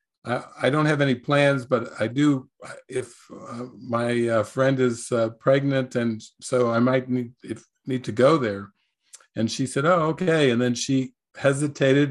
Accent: American